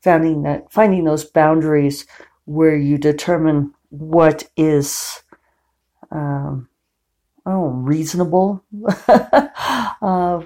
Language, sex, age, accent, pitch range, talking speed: English, female, 50-69, American, 135-180 Hz, 80 wpm